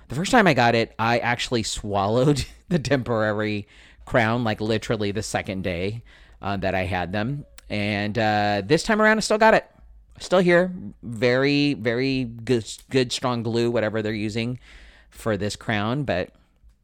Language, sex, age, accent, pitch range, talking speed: English, male, 40-59, American, 105-130 Hz, 165 wpm